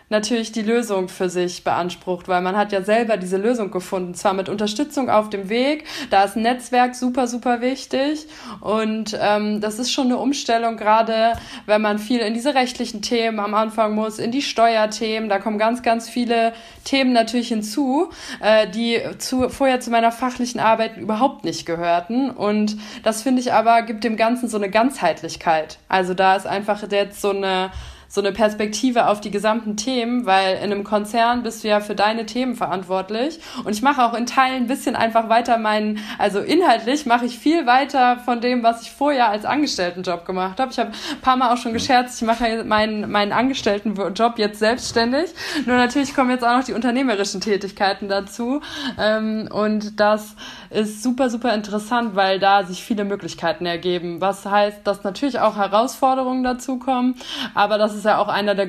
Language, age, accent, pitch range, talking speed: German, 20-39, German, 205-245 Hz, 185 wpm